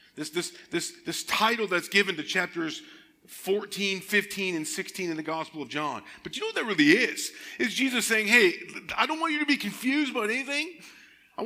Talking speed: 205 wpm